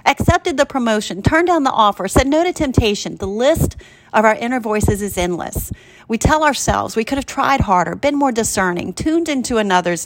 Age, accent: 40-59, American